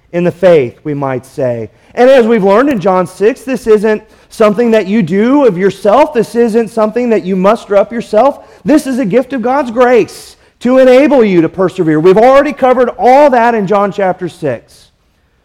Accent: American